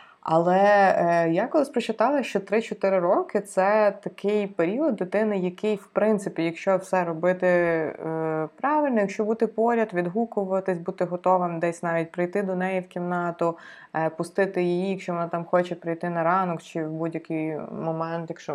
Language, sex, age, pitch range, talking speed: Ukrainian, female, 20-39, 165-195 Hz, 160 wpm